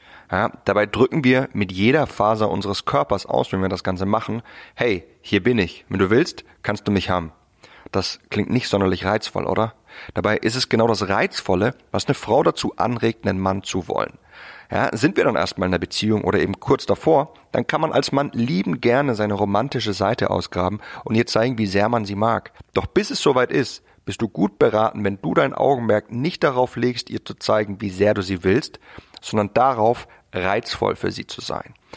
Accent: German